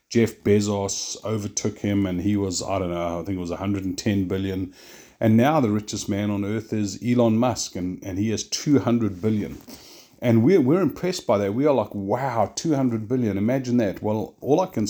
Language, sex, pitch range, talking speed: English, male, 95-120 Hz, 200 wpm